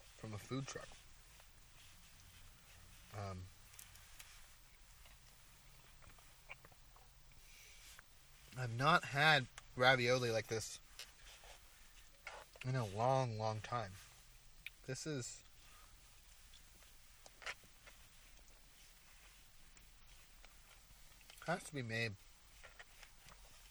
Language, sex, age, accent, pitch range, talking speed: English, male, 30-49, American, 95-120 Hz, 60 wpm